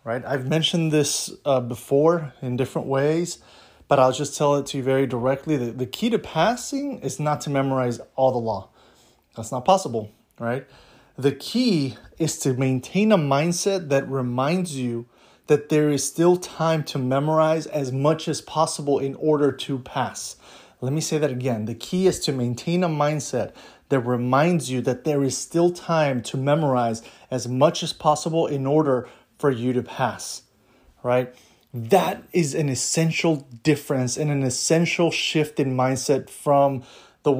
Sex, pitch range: male, 130-160 Hz